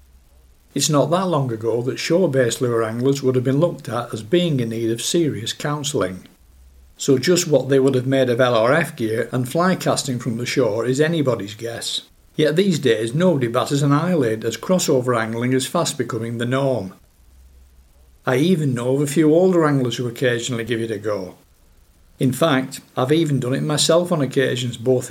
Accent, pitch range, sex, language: British, 115-145 Hz, male, English